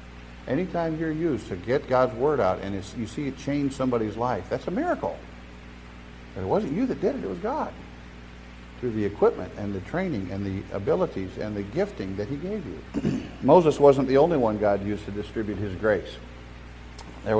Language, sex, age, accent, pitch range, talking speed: English, male, 50-69, American, 90-135 Hz, 195 wpm